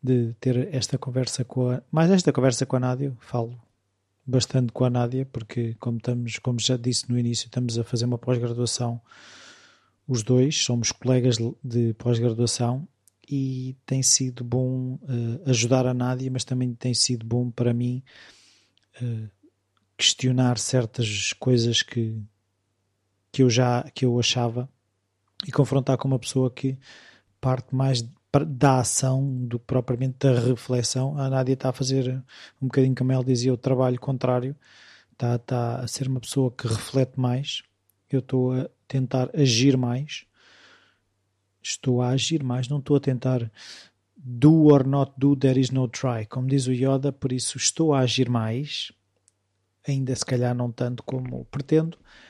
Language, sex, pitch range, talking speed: Portuguese, male, 120-130 Hz, 150 wpm